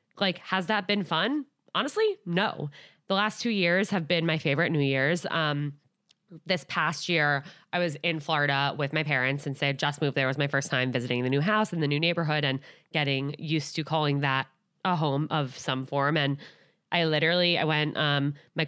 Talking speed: 205 wpm